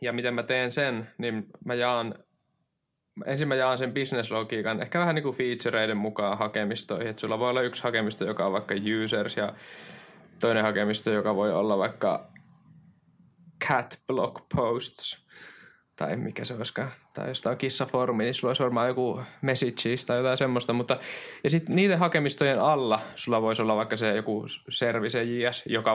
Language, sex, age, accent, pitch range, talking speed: Finnish, male, 20-39, native, 110-135 Hz, 165 wpm